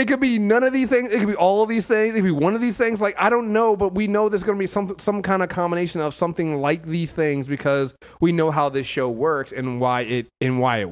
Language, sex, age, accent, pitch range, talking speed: English, male, 30-49, American, 110-165 Hz, 300 wpm